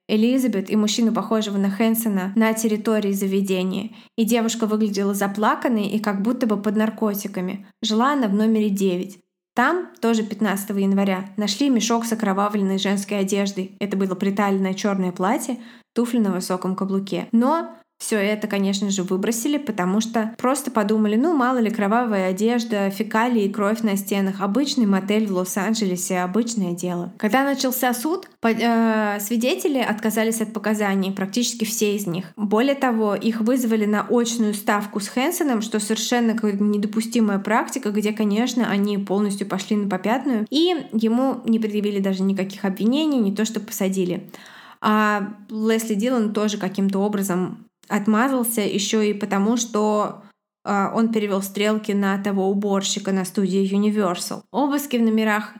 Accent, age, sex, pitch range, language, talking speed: native, 20-39, female, 200-230 Hz, Russian, 145 wpm